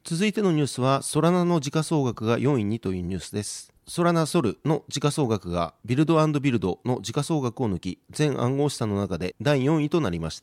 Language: Japanese